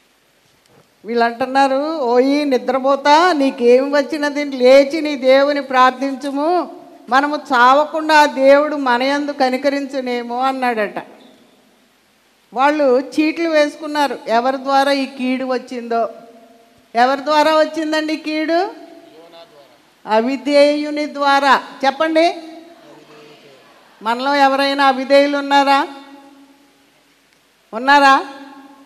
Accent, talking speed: native, 85 wpm